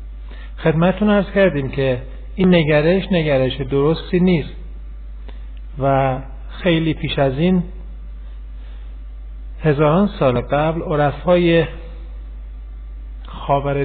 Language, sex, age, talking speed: Persian, male, 50-69, 80 wpm